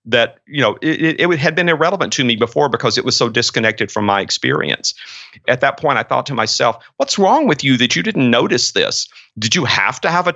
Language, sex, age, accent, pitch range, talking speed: English, male, 40-59, American, 120-150 Hz, 240 wpm